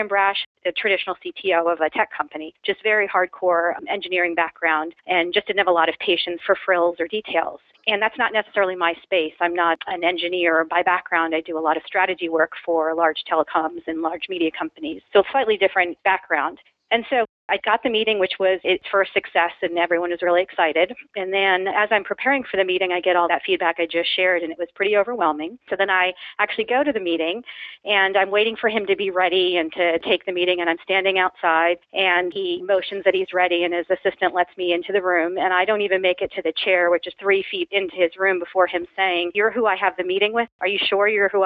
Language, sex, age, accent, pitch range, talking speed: English, female, 40-59, American, 175-195 Hz, 235 wpm